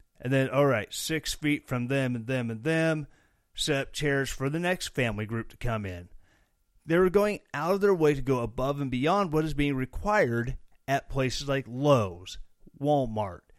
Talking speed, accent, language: 195 wpm, American, English